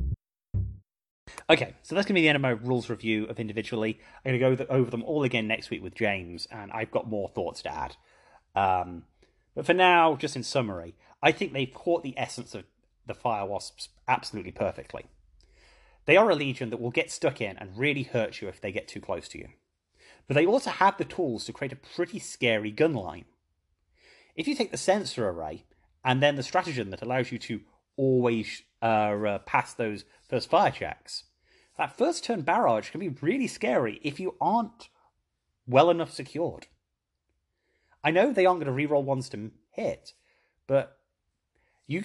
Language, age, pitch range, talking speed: English, 30-49, 100-145 Hz, 190 wpm